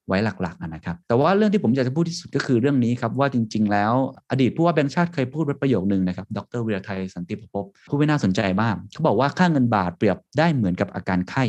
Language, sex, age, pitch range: Thai, male, 20-39, 100-130 Hz